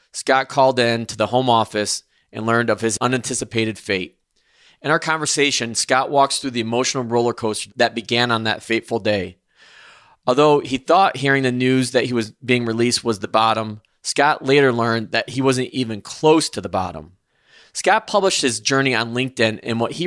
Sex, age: male, 20-39